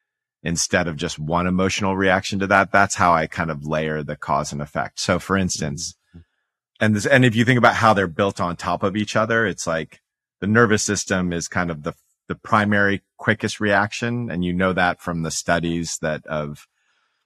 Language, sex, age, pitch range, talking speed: English, male, 30-49, 75-95 Hz, 200 wpm